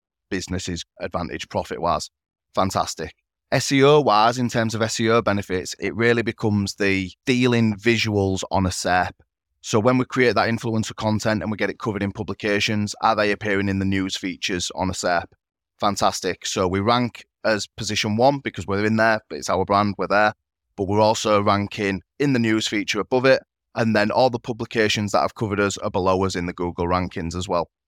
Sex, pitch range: male, 95-110 Hz